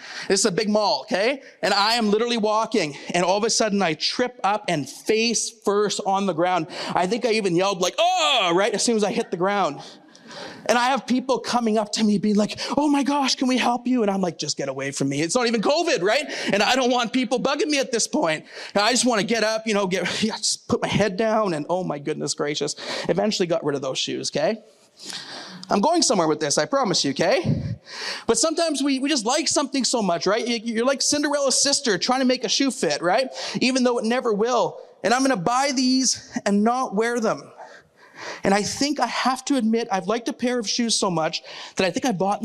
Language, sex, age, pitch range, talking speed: English, male, 30-49, 190-250 Hz, 245 wpm